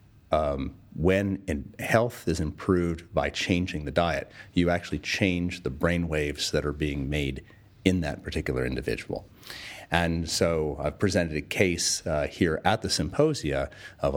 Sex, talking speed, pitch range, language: male, 150 wpm, 75-95 Hz, English